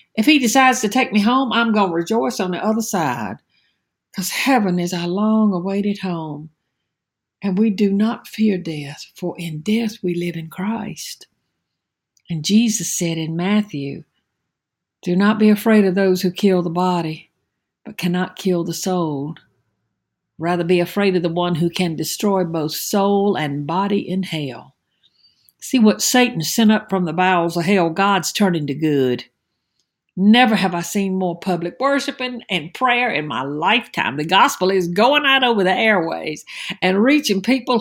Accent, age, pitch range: American, 60-79, 175-215 Hz